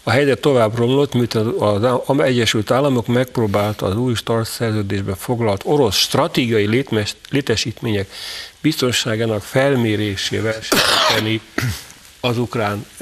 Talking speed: 120 wpm